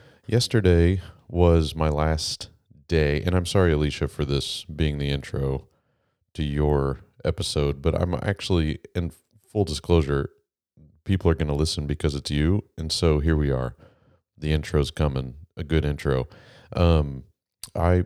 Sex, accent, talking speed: male, American, 145 wpm